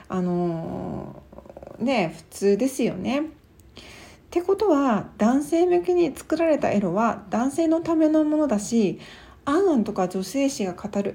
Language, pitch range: Japanese, 190-275 Hz